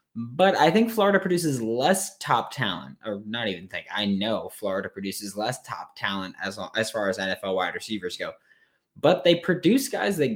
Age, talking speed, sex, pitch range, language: 20-39, 185 wpm, male, 100-145 Hz, English